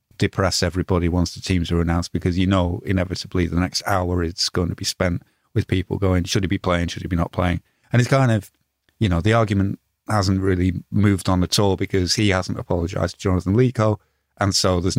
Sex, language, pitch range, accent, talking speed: male, English, 90-105 Hz, British, 220 wpm